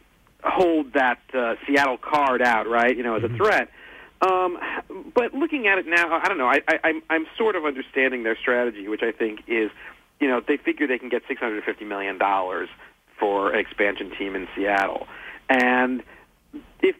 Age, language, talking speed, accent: 50-69, English, 180 wpm, American